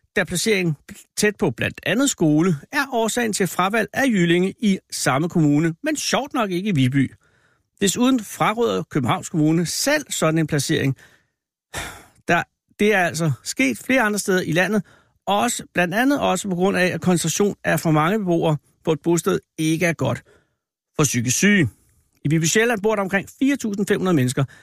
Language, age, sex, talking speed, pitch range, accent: Danish, 60-79, male, 170 wpm, 150-205 Hz, native